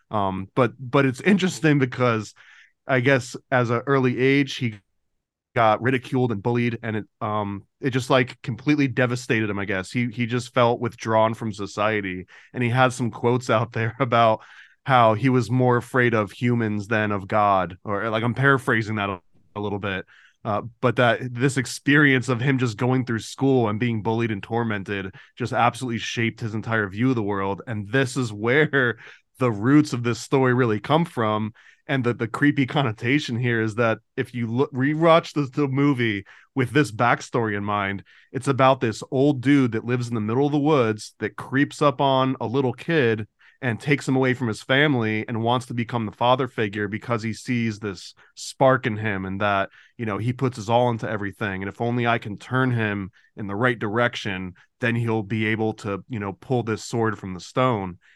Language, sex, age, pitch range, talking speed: English, male, 20-39, 110-130 Hz, 200 wpm